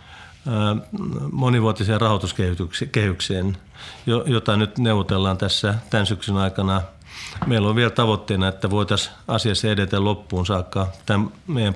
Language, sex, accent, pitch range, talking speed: Finnish, male, native, 95-110 Hz, 105 wpm